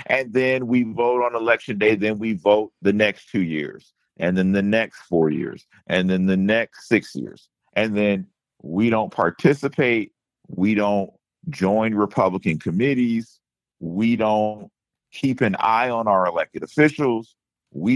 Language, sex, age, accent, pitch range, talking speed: English, male, 50-69, American, 105-130 Hz, 155 wpm